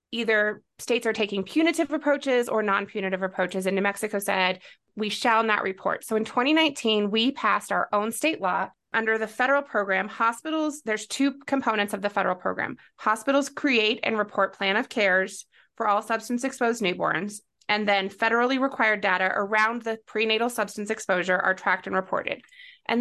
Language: English